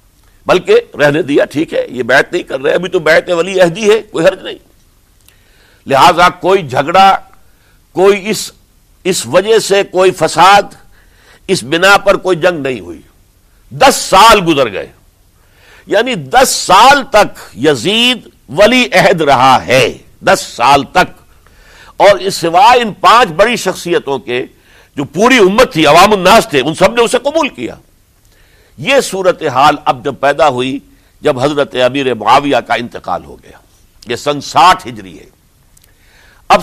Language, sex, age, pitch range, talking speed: Urdu, male, 60-79, 140-195 Hz, 150 wpm